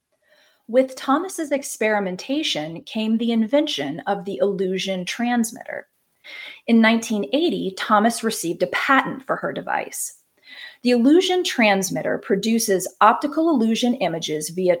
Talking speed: 110 wpm